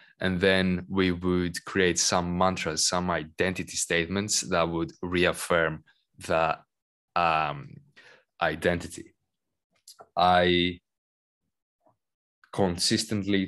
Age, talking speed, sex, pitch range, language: 20-39, 80 wpm, male, 85-95 Hz, English